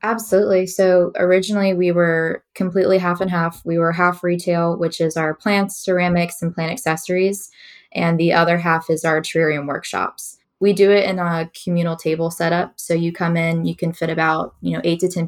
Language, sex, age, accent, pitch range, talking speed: English, female, 20-39, American, 160-180 Hz, 195 wpm